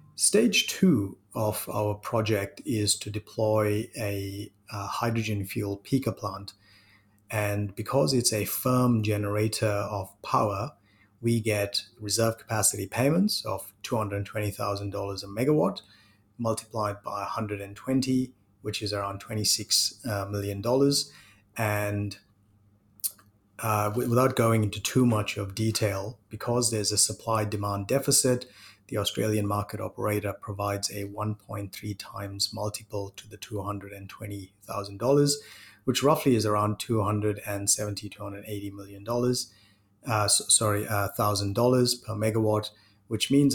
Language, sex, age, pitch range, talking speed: English, male, 30-49, 100-115 Hz, 110 wpm